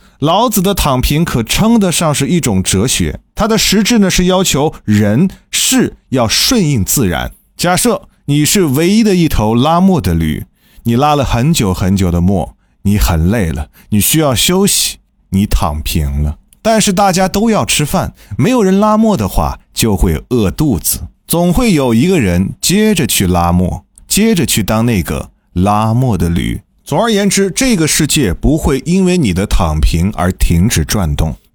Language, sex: Chinese, male